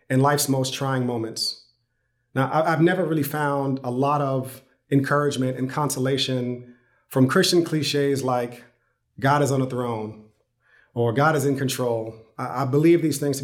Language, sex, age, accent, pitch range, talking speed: English, male, 40-59, American, 125-160 Hz, 155 wpm